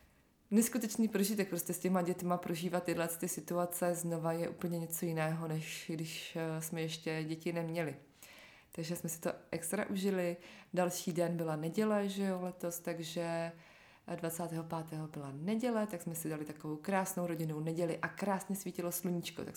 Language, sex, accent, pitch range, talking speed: Czech, female, native, 160-190 Hz, 155 wpm